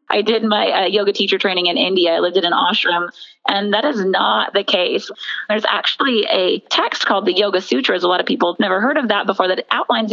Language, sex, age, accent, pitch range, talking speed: English, female, 30-49, American, 195-255 Hz, 235 wpm